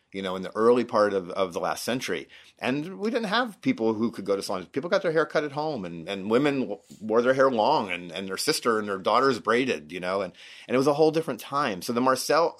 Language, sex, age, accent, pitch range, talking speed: English, male, 30-49, American, 95-135 Hz, 265 wpm